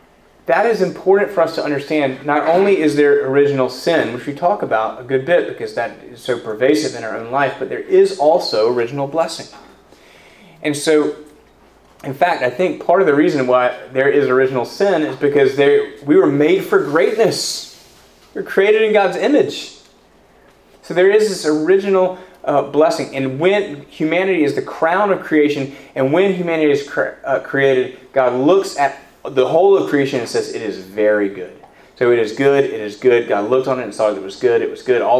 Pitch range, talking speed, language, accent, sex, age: 130-185 Hz, 200 wpm, English, American, male, 30-49